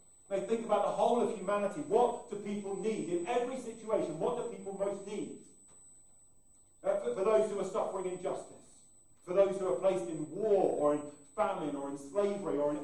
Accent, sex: British, male